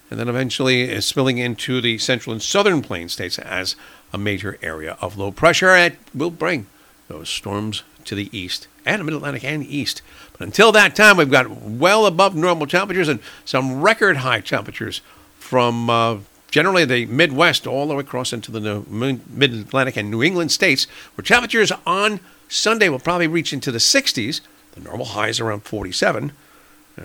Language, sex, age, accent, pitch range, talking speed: English, male, 50-69, American, 115-155 Hz, 175 wpm